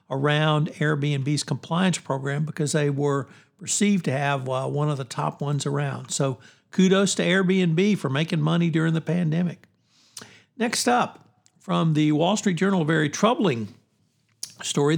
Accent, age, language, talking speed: American, 60-79, English, 150 wpm